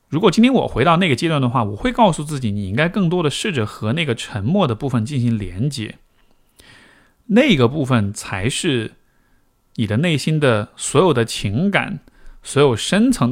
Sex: male